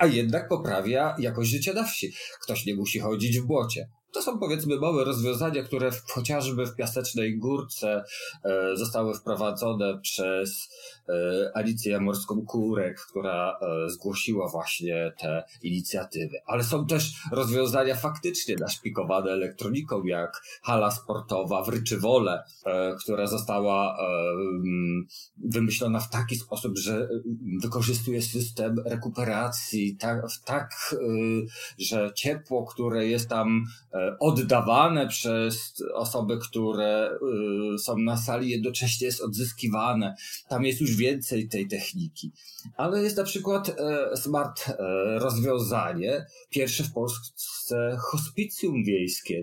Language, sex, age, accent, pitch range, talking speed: Polish, male, 40-59, native, 105-135 Hz, 110 wpm